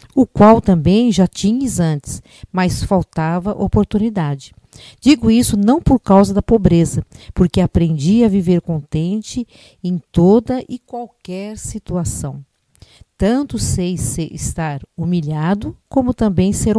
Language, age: Portuguese, 50-69